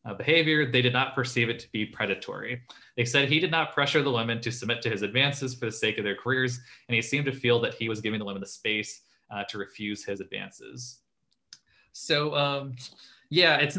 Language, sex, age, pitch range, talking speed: English, male, 20-39, 105-135 Hz, 220 wpm